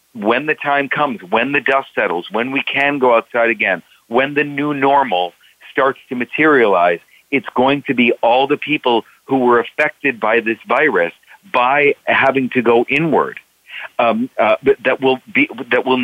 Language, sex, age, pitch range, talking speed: English, male, 40-59, 115-140 Hz, 170 wpm